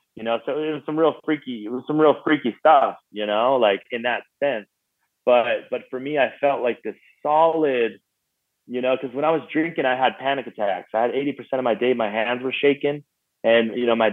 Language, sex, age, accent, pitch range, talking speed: English, male, 30-49, American, 105-135 Hz, 230 wpm